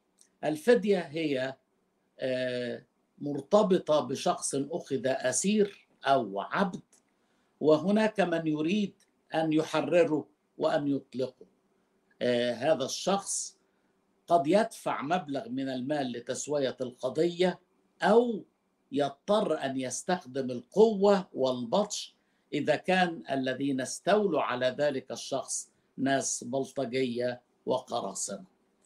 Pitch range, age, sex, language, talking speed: 140-200 Hz, 60-79, male, Arabic, 85 wpm